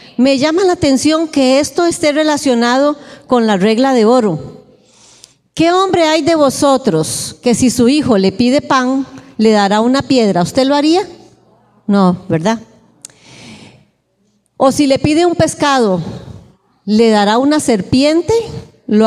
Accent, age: American, 40-59